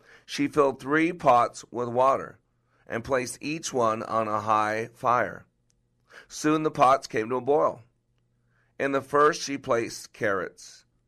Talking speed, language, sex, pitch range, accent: 145 wpm, English, male, 105-130 Hz, American